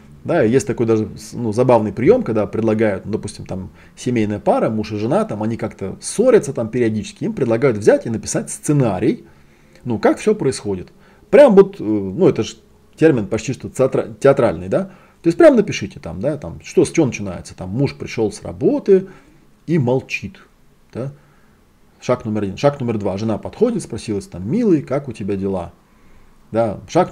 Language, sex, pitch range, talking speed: Russian, male, 100-140 Hz, 175 wpm